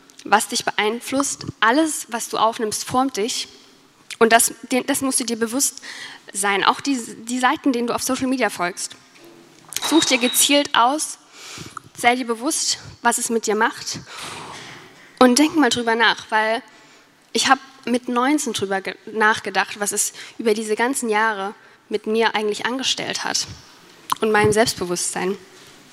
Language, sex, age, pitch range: German, female, 10-29, 210-260 Hz